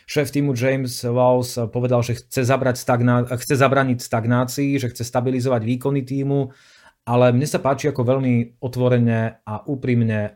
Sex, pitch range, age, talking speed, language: male, 115-130 Hz, 30-49, 145 wpm, Slovak